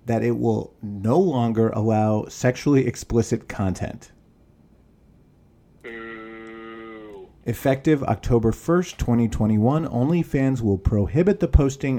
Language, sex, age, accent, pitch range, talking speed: English, male, 40-59, American, 105-130 Hz, 90 wpm